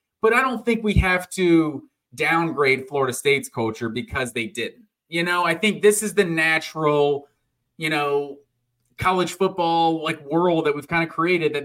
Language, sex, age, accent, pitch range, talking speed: English, male, 30-49, American, 155-195 Hz, 175 wpm